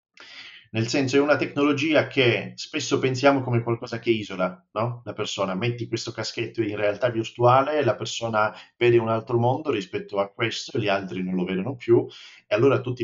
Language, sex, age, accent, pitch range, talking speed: Italian, male, 30-49, native, 100-130 Hz, 180 wpm